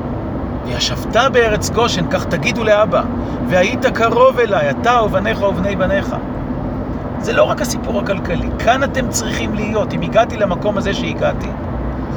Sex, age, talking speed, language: male, 40-59, 135 wpm, Hebrew